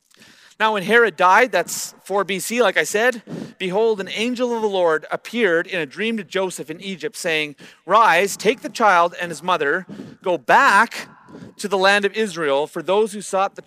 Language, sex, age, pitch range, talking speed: English, male, 30-49, 175-215 Hz, 195 wpm